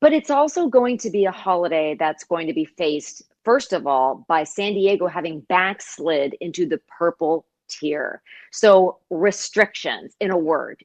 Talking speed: 165 wpm